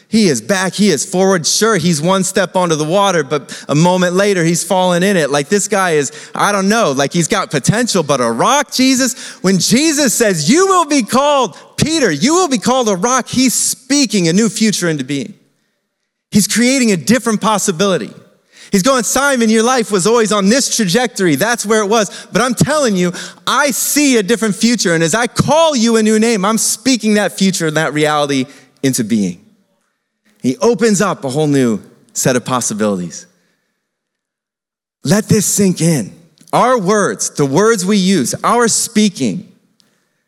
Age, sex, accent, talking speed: 30-49, male, American, 185 wpm